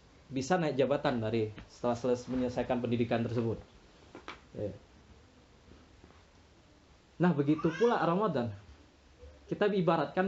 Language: Indonesian